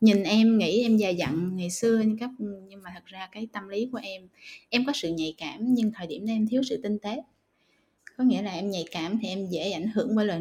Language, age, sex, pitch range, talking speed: Vietnamese, 20-39, female, 195-250 Hz, 255 wpm